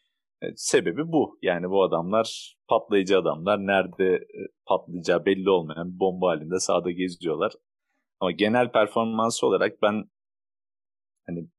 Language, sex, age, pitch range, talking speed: Turkish, male, 40-59, 95-120 Hz, 110 wpm